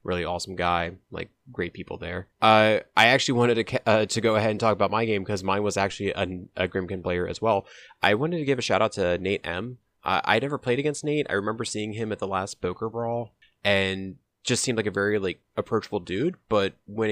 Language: English